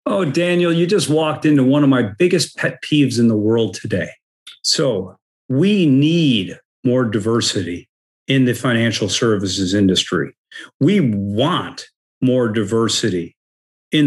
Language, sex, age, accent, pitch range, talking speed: English, male, 50-69, American, 110-145 Hz, 130 wpm